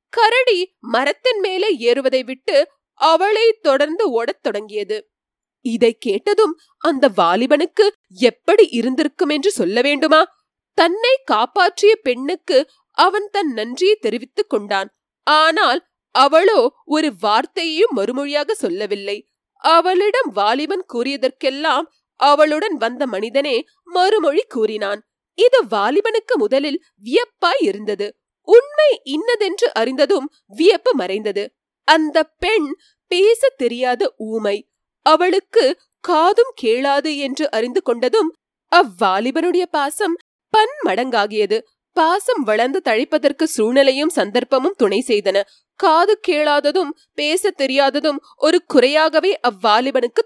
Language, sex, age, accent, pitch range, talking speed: Tamil, female, 30-49, native, 260-405 Hz, 70 wpm